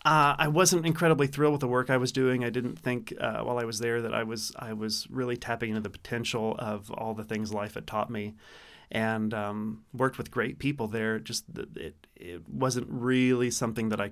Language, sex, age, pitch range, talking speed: English, male, 30-49, 110-140 Hz, 220 wpm